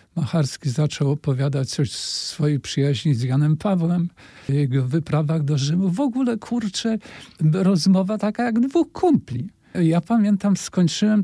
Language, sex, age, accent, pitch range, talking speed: Polish, male, 50-69, native, 135-175 Hz, 135 wpm